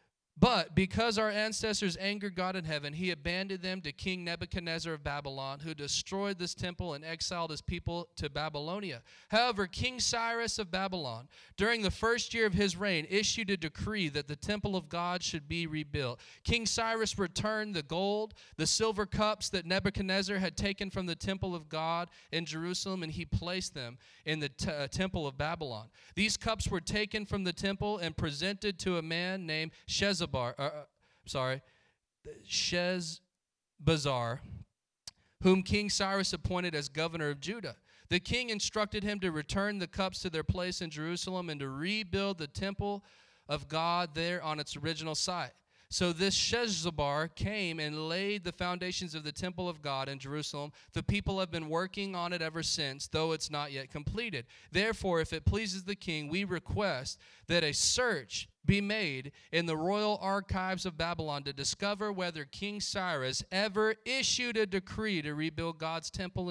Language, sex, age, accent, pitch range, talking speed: English, male, 40-59, American, 155-195 Hz, 170 wpm